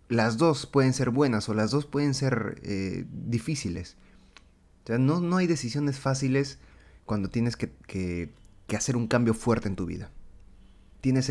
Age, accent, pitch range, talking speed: 30-49, Mexican, 100-130 Hz, 170 wpm